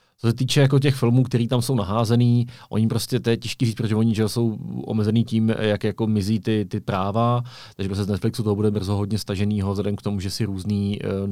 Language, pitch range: Czech, 100-115 Hz